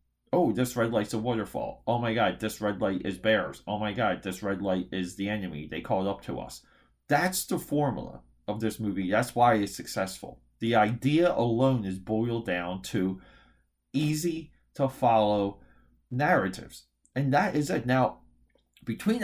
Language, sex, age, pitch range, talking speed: English, male, 30-49, 100-145 Hz, 170 wpm